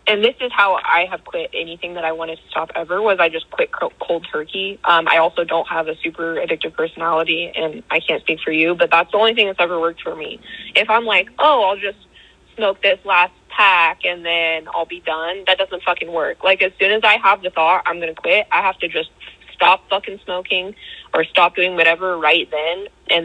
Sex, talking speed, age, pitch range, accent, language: female, 230 wpm, 20-39, 165-195 Hz, American, English